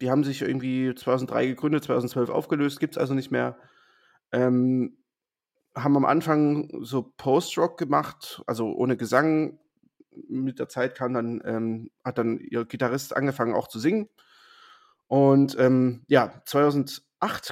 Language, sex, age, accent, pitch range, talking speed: German, male, 30-49, German, 125-150 Hz, 140 wpm